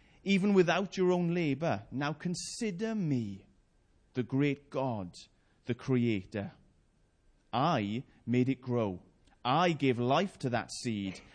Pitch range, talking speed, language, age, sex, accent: 105-150 Hz, 120 wpm, English, 30-49, male, British